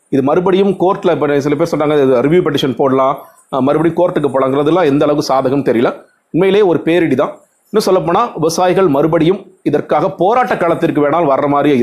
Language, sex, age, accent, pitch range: Tamil, male, 30-49, native, 140-175 Hz